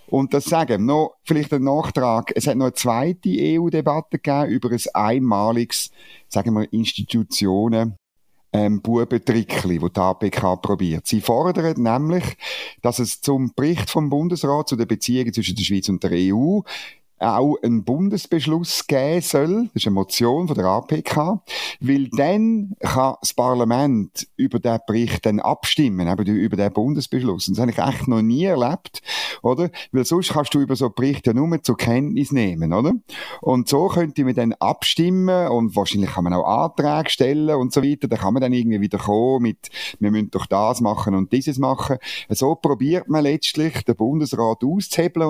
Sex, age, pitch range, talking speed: male, 50-69, 110-145 Hz, 180 wpm